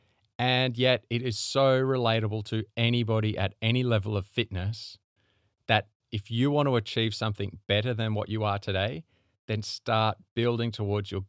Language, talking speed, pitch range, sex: English, 165 wpm, 100-120 Hz, male